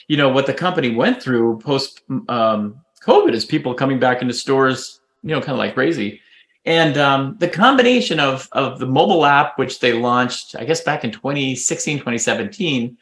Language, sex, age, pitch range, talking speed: English, male, 30-49, 130-190 Hz, 180 wpm